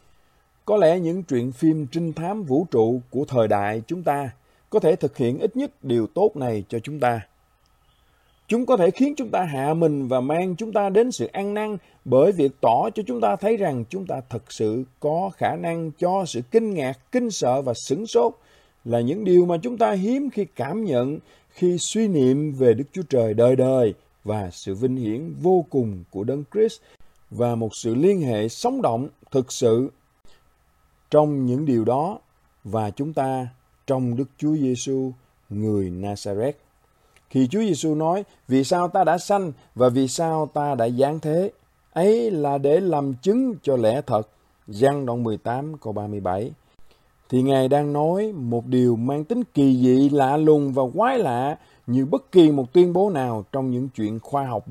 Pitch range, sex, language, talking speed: 120-175 Hz, male, Vietnamese, 190 wpm